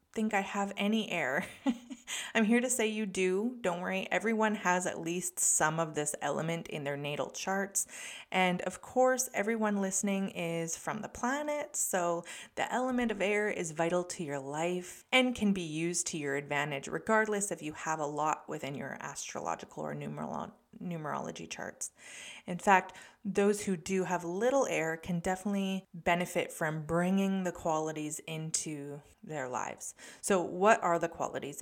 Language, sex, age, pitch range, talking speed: English, female, 20-39, 155-200 Hz, 165 wpm